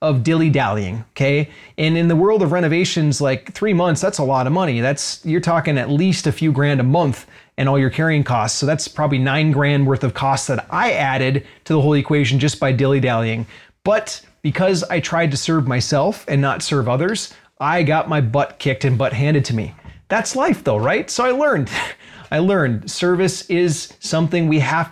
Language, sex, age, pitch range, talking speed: English, male, 30-49, 135-165 Hz, 205 wpm